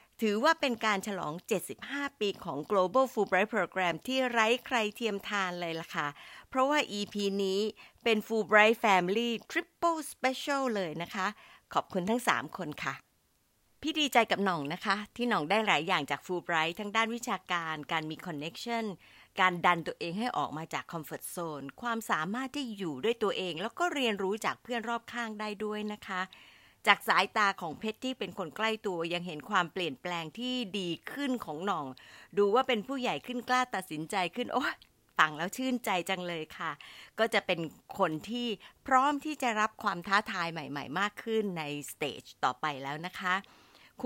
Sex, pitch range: female, 180-240 Hz